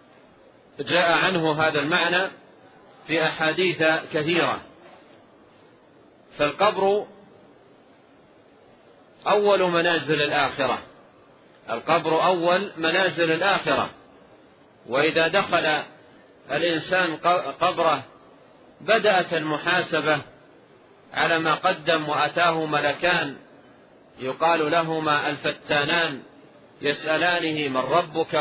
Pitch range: 150-175 Hz